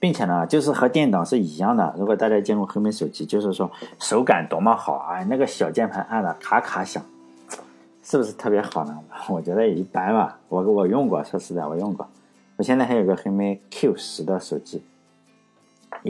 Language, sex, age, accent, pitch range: Chinese, male, 50-69, native, 105-165 Hz